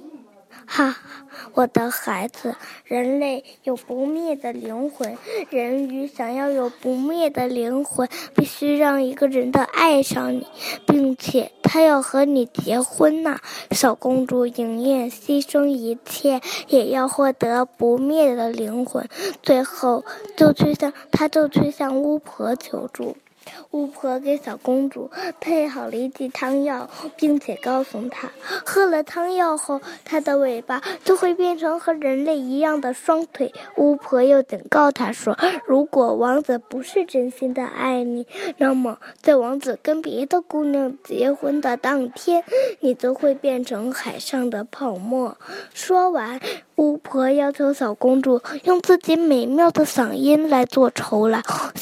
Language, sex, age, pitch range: Chinese, female, 10-29, 255-305 Hz